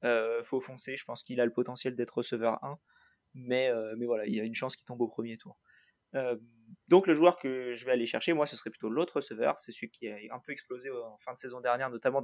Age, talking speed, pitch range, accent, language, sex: 20-39, 270 wpm, 115-140 Hz, French, French, male